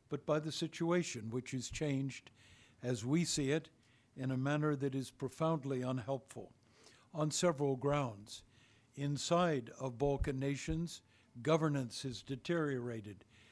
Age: 60-79